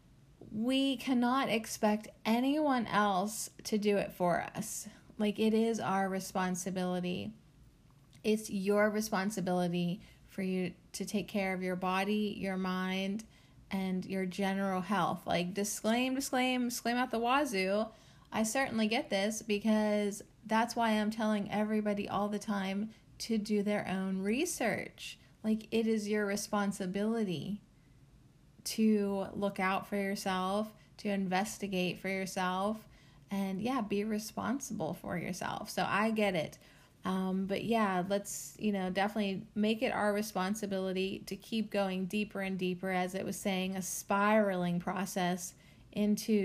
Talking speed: 135 wpm